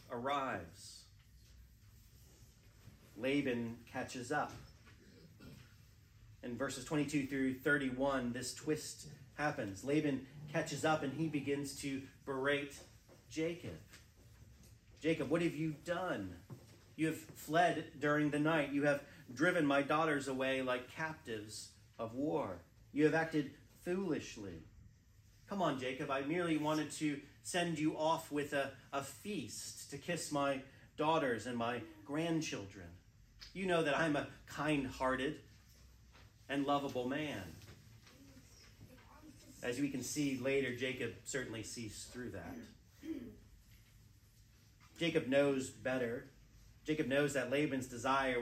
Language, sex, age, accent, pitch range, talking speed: English, male, 40-59, American, 110-145 Hz, 115 wpm